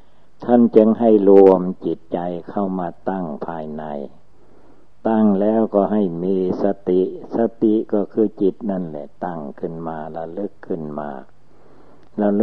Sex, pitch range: male, 85-105 Hz